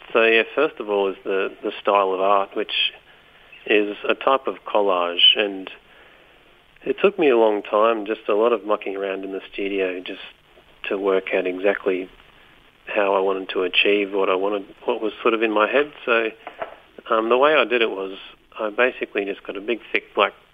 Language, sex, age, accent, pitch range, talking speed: English, male, 40-59, Australian, 95-105 Hz, 200 wpm